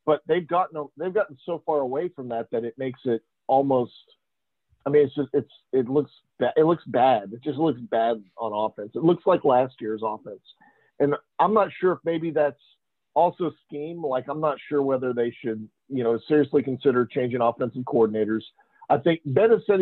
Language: English